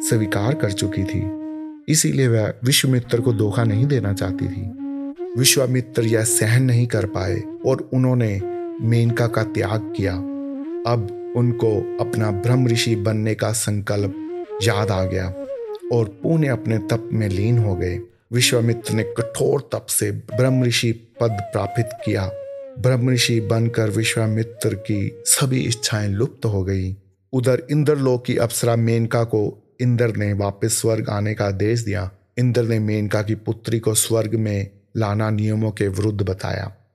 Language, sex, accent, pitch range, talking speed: Hindi, male, native, 105-130 Hz, 115 wpm